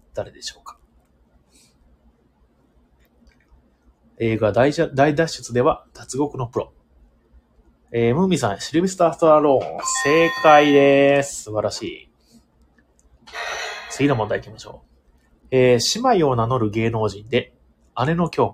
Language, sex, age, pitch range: Japanese, male, 30-49, 100-150 Hz